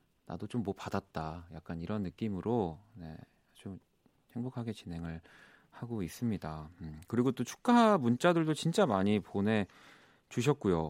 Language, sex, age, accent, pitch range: Korean, male, 40-59, native, 90-130 Hz